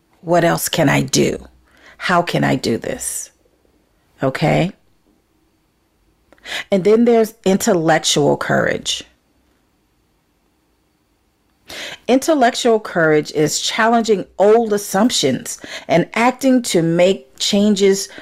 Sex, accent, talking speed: female, American, 90 wpm